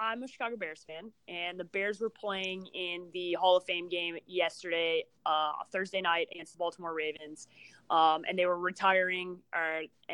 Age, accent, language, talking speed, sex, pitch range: 20-39, American, English, 180 wpm, female, 175-230 Hz